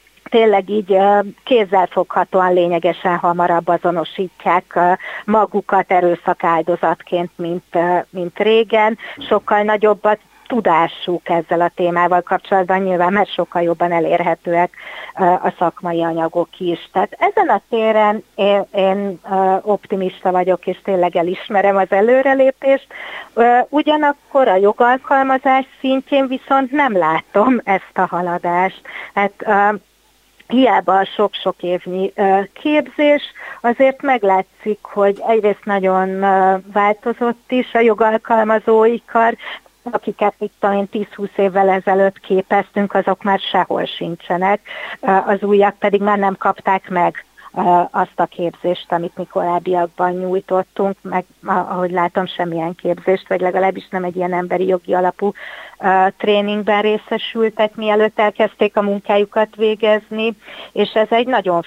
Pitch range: 180-215 Hz